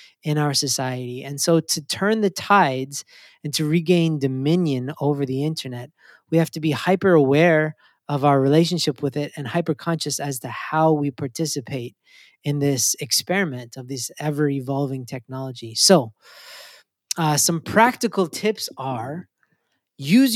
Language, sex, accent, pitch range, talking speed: English, male, American, 145-185 Hz, 145 wpm